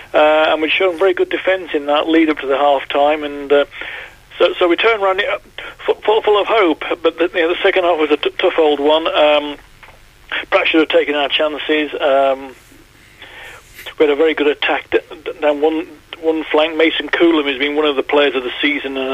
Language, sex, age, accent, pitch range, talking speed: English, male, 40-59, British, 145-175 Hz, 225 wpm